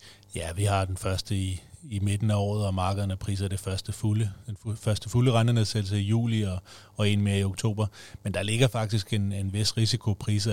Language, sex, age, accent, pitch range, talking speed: Danish, male, 30-49, native, 95-105 Hz, 200 wpm